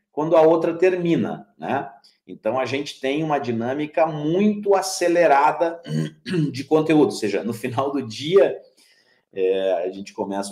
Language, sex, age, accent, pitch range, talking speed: Portuguese, male, 40-59, Brazilian, 105-150 Hz, 145 wpm